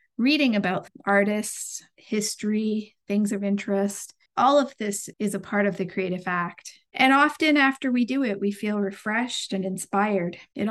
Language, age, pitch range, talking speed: English, 40-59, 205-245 Hz, 165 wpm